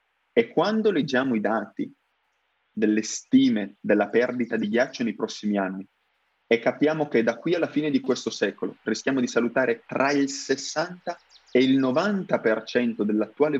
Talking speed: 150 wpm